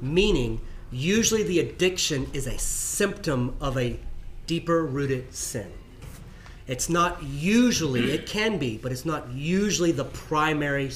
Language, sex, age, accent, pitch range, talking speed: English, male, 30-49, American, 125-160 Hz, 130 wpm